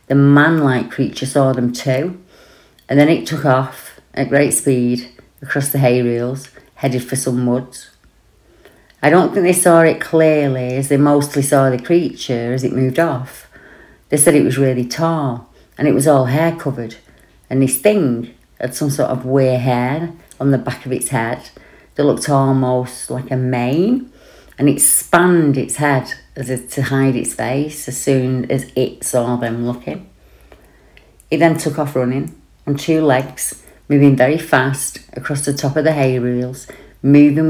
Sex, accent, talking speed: female, British, 175 wpm